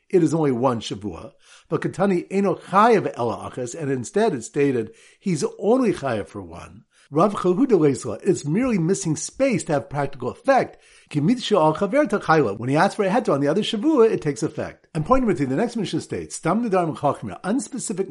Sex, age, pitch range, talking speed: male, 50-69, 140-205 Hz, 180 wpm